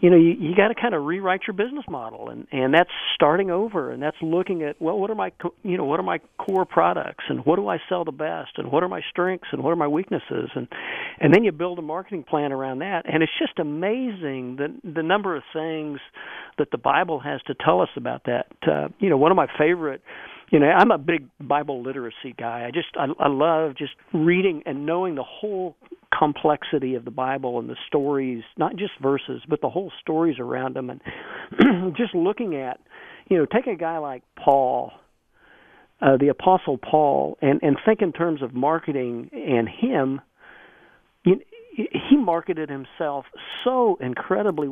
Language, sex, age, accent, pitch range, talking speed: English, male, 50-69, American, 140-185 Hz, 200 wpm